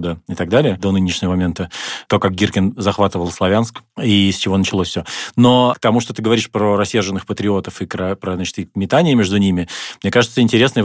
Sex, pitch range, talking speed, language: male, 95-110 Hz, 195 wpm, Russian